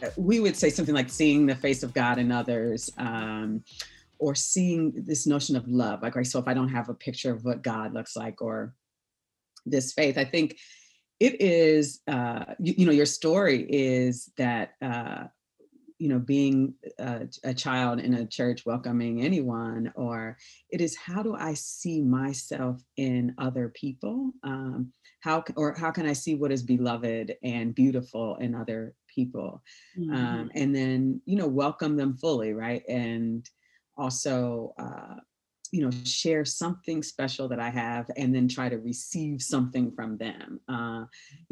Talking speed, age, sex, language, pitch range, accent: 170 wpm, 40-59, female, English, 120-150 Hz, American